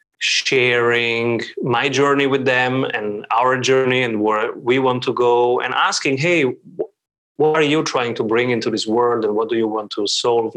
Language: English